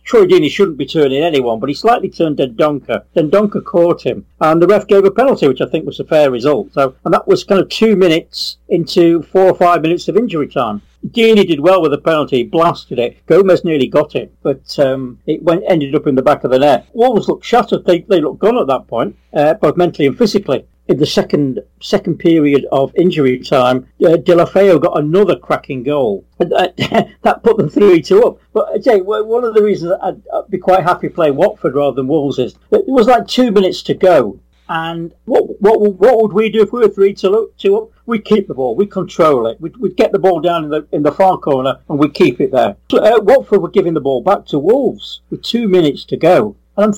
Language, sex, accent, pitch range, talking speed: English, male, British, 165-215 Hz, 235 wpm